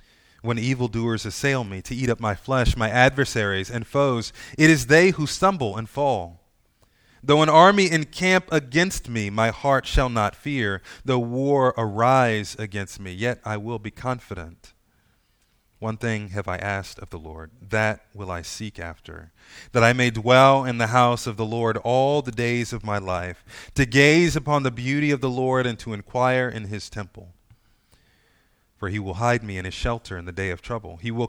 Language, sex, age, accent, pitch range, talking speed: English, male, 30-49, American, 100-130 Hz, 190 wpm